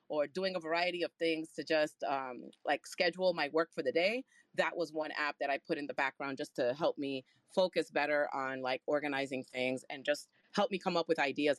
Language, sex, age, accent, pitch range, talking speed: English, female, 30-49, American, 145-185 Hz, 230 wpm